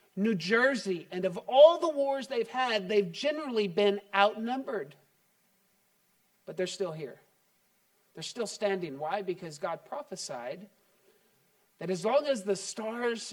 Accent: American